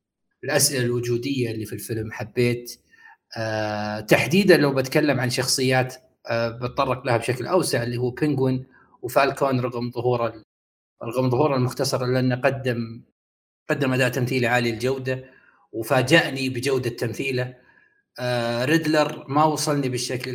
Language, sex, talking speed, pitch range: Arabic, male, 125 wpm, 120-150 Hz